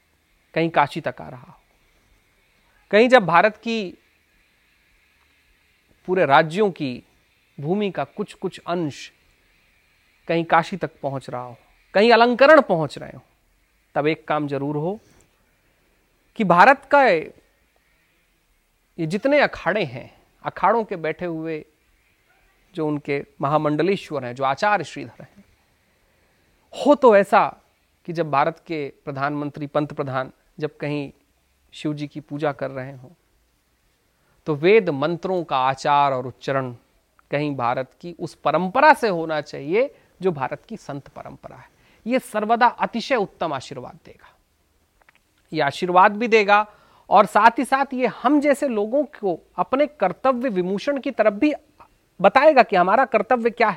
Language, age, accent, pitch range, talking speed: Hindi, 40-59, native, 140-220 Hz, 135 wpm